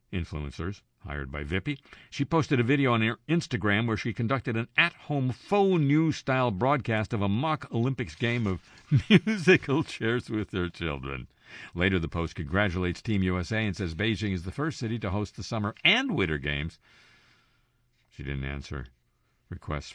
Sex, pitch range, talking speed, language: male, 80-120 Hz, 160 wpm, English